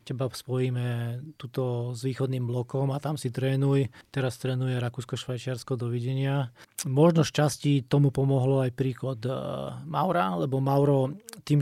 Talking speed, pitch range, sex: 125 wpm, 125-140 Hz, male